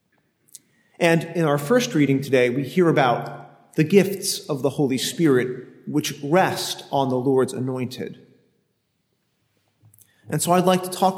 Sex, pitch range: male, 135-180 Hz